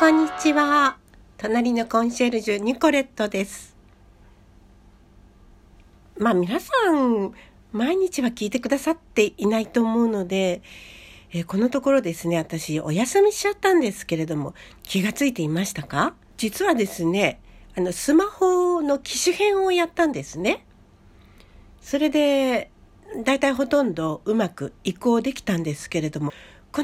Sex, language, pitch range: female, Japanese, 165-275 Hz